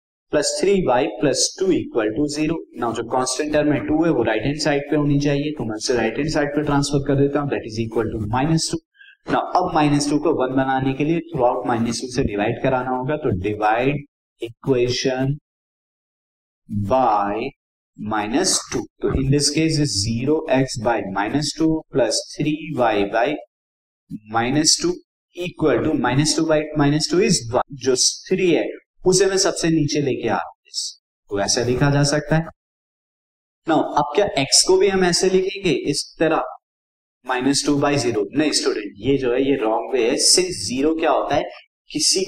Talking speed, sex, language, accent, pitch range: 85 wpm, male, Hindi, native, 120-160 Hz